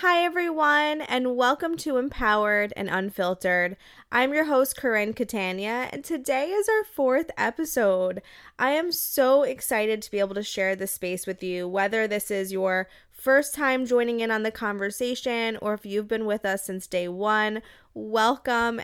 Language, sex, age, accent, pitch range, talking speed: English, female, 20-39, American, 200-260 Hz, 170 wpm